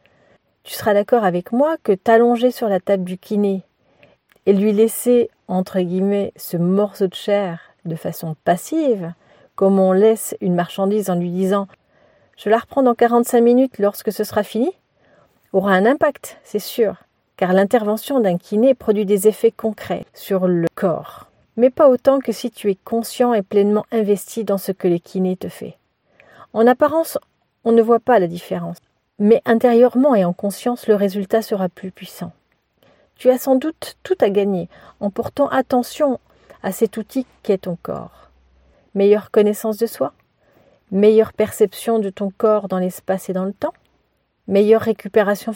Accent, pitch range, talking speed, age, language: French, 190-230 Hz, 165 wpm, 40-59, French